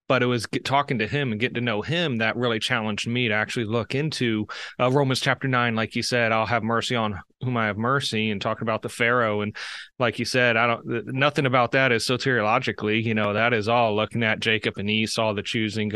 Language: English